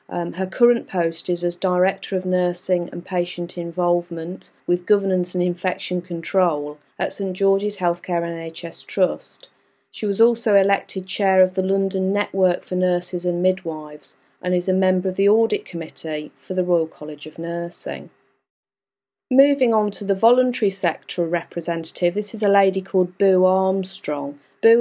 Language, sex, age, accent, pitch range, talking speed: English, female, 40-59, British, 175-195 Hz, 155 wpm